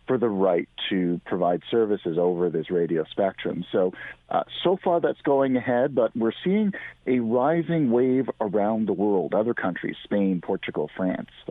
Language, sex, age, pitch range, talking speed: English, male, 50-69, 105-130 Hz, 160 wpm